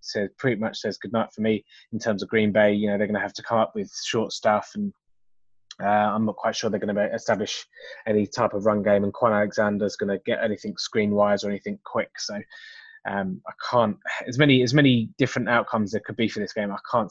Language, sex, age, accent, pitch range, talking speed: English, male, 20-39, British, 105-145 Hz, 240 wpm